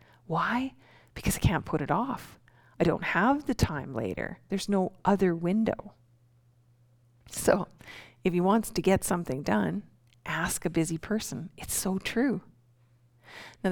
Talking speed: 145 wpm